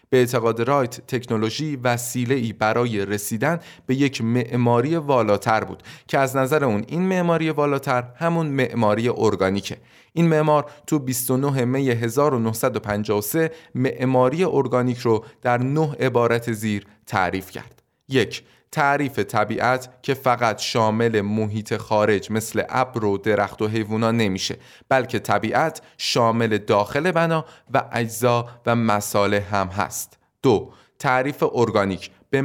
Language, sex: Persian, male